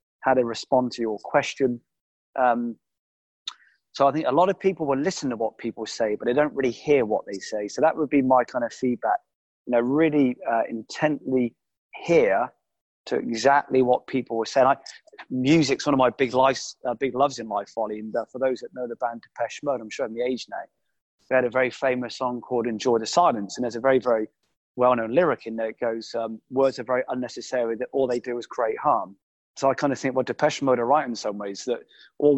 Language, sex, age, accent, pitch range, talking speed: English, male, 20-39, British, 115-135 Hz, 235 wpm